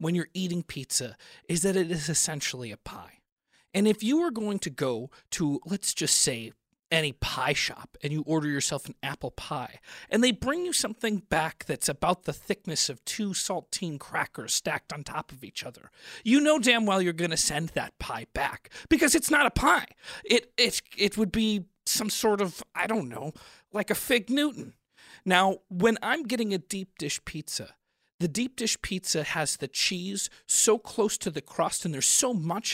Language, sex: English, male